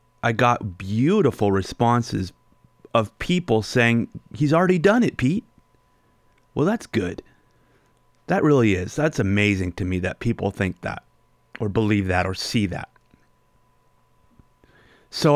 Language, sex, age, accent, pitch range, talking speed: English, male, 30-49, American, 100-130 Hz, 130 wpm